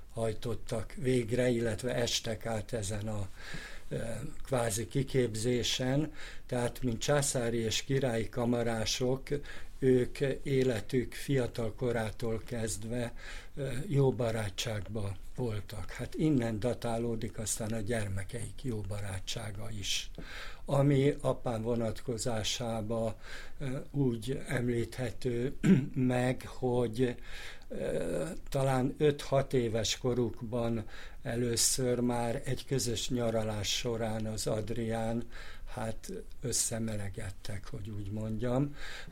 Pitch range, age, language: 110-130 Hz, 60-79, Hungarian